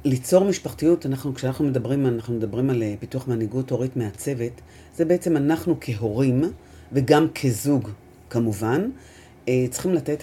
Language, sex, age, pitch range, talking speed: Hebrew, female, 40-59, 120-160 Hz, 125 wpm